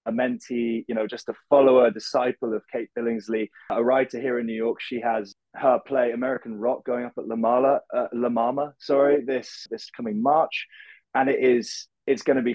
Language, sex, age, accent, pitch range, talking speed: English, male, 20-39, British, 110-130 Hz, 210 wpm